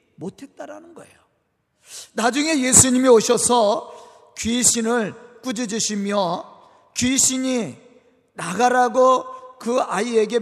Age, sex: 40-59, male